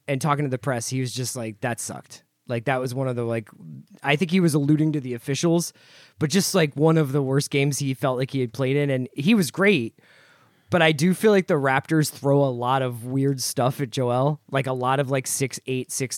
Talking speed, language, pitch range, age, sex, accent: 250 wpm, English, 130-155 Hz, 20-39, male, American